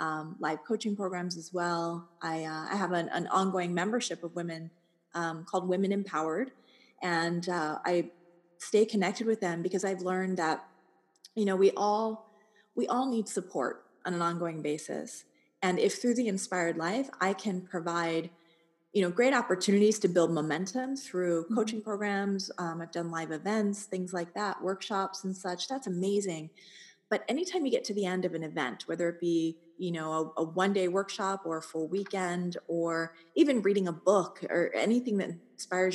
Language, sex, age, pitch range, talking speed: English, female, 30-49, 170-215 Hz, 175 wpm